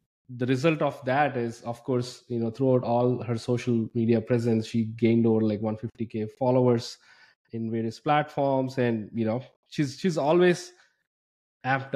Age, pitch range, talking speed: 20-39, 115-135 Hz, 160 wpm